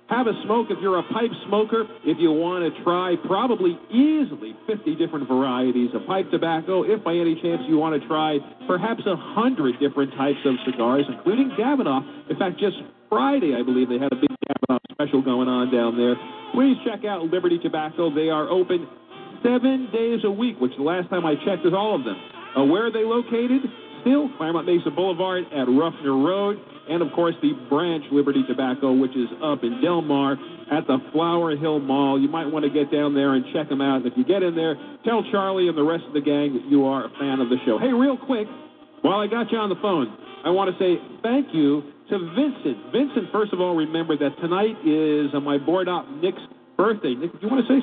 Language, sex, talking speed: English, male, 220 wpm